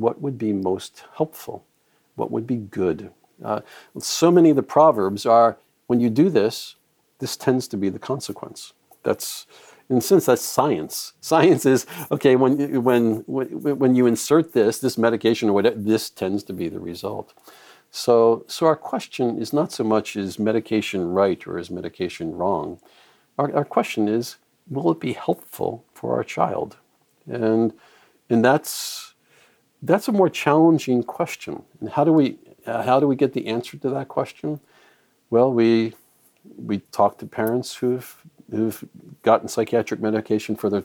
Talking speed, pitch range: 165 wpm, 110-135 Hz